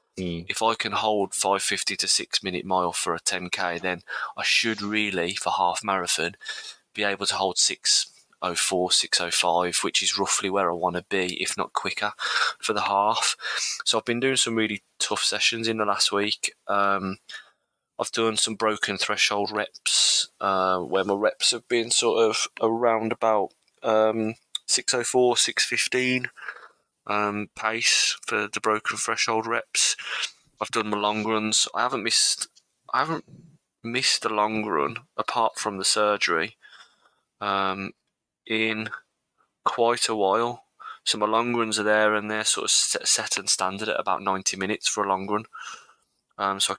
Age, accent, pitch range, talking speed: 20-39, British, 100-115 Hz, 160 wpm